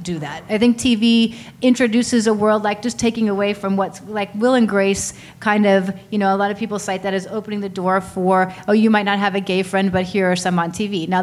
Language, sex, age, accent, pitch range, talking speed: English, female, 30-49, American, 190-225 Hz, 255 wpm